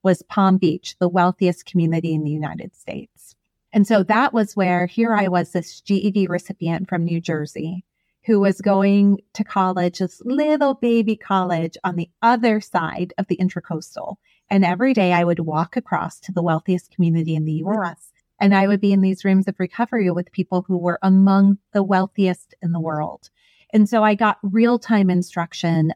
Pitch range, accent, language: 170-205 Hz, American, English